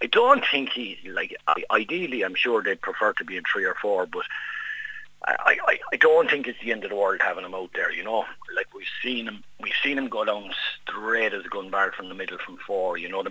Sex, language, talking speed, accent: male, English, 250 wpm, Irish